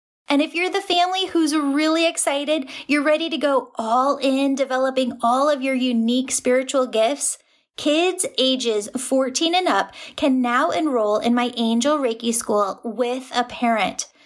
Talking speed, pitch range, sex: 155 wpm, 235-285 Hz, female